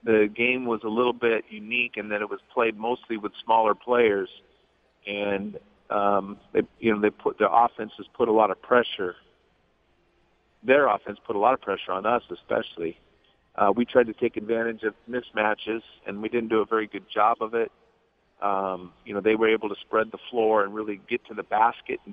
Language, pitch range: English, 105-115 Hz